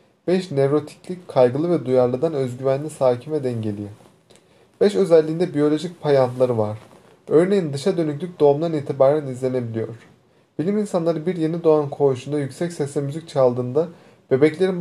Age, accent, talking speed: 30-49, native, 125 wpm